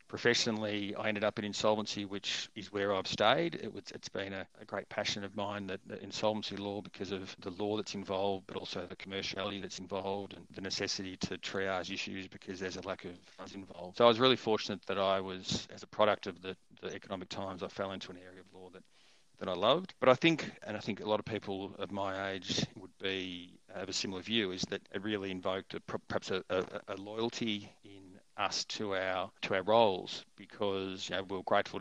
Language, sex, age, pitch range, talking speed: English, male, 40-59, 95-105 Hz, 220 wpm